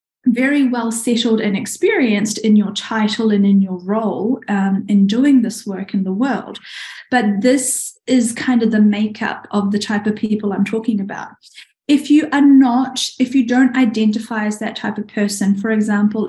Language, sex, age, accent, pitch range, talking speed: English, female, 10-29, Australian, 210-245 Hz, 185 wpm